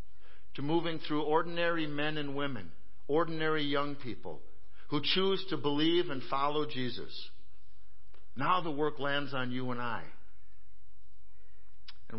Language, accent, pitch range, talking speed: English, American, 100-140 Hz, 130 wpm